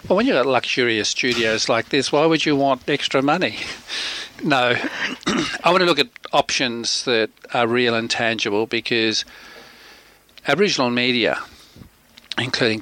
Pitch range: 115-130 Hz